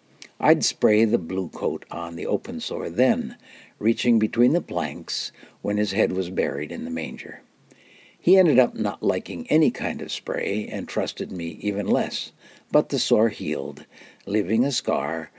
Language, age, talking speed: English, 60-79, 170 wpm